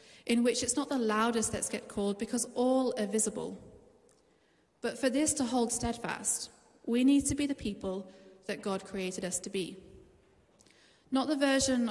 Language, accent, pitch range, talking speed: English, British, 210-250 Hz, 170 wpm